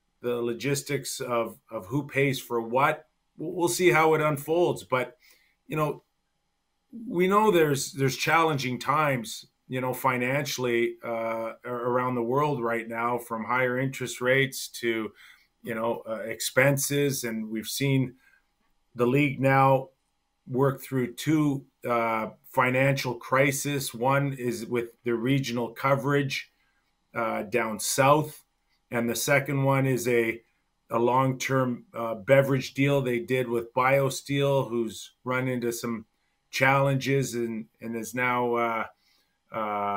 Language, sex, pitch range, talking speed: English, male, 120-140 Hz, 130 wpm